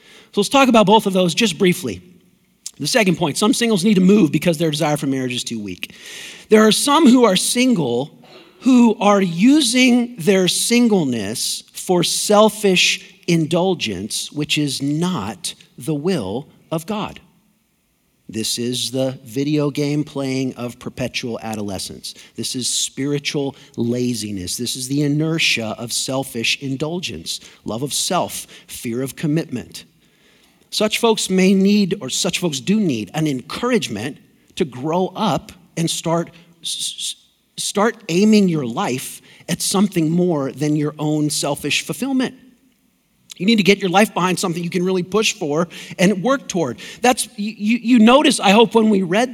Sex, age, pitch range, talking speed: male, 50-69, 145-210 Hz, 155 wpm